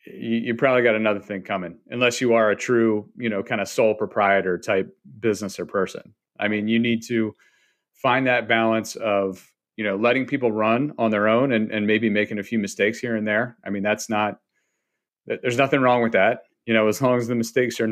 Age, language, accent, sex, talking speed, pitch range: 40-59, English, American, male, 220 wpm, 105-120 Hz